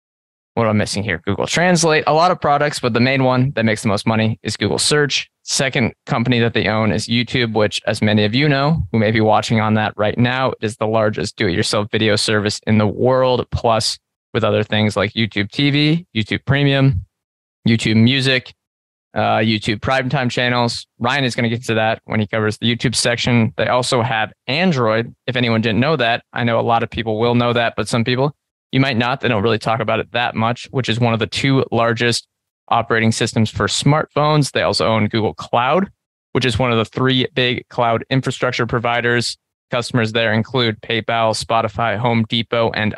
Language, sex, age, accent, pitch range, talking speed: English, male, 20-39, American, 110-125 Hz, 205 wpm